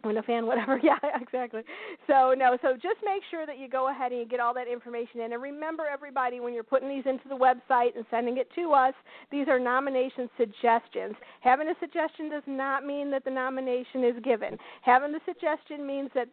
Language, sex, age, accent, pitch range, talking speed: English, female, 40-59, American, 235-275 Hz, 210 wpm